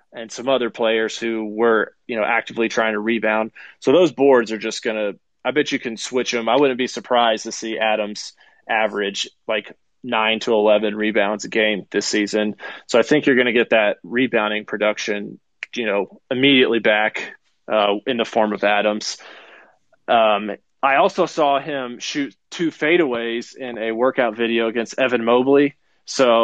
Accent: American